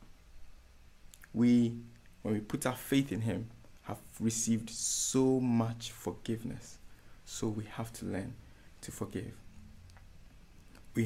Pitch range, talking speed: 105-140 Hz, 115 wpm